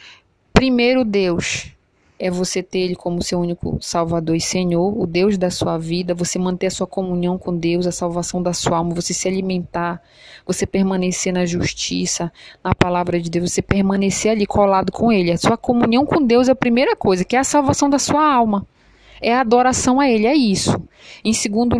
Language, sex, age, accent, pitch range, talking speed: Portuguese, female, 20-39, Brazilian, 175-210 Hz, 195 wpm